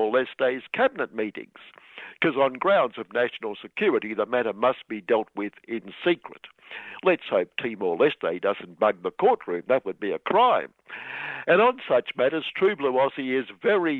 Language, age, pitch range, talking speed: English, 60-79, 125-170 Hz, 165 wpm